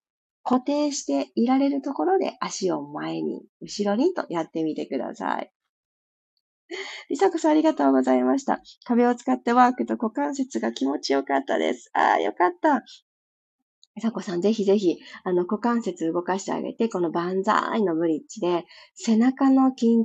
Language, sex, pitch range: Japanese, female, 175-285 Hz